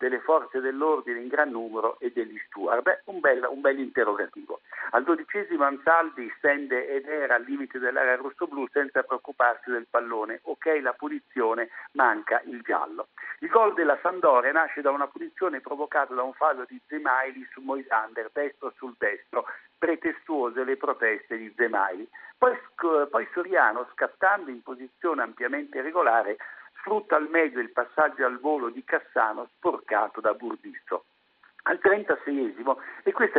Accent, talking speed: native, 150 wpm